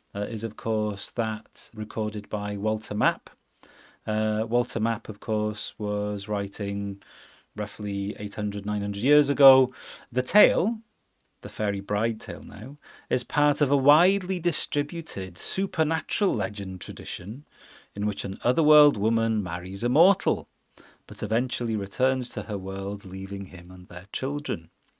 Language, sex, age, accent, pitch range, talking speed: English, male, 30-49, British, 100-125 Hz, 135 wpm